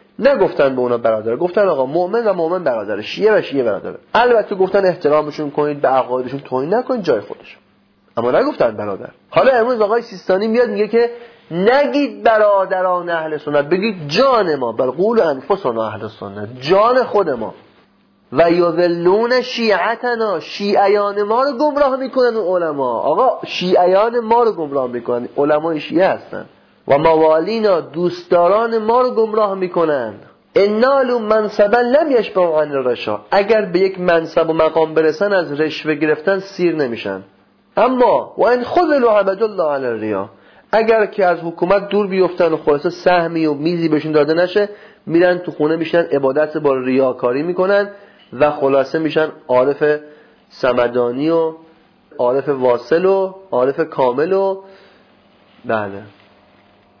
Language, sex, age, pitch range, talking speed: Persian, male, 30-49, 150-210 Hz, 140 wpm